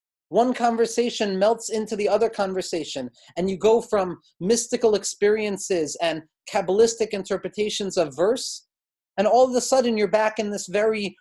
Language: English